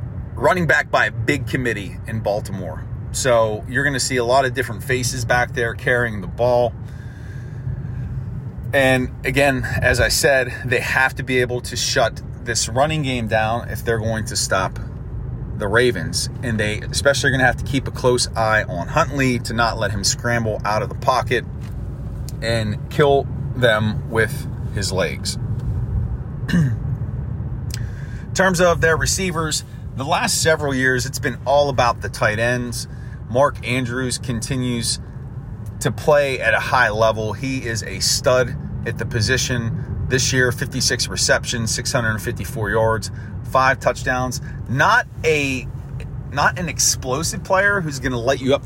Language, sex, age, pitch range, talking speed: English, male, 30-49, 115-130 Hz, 155 wpm